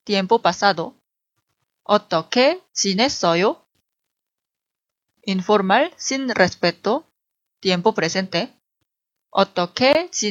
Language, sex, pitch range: Korean, female, 190-250 Hz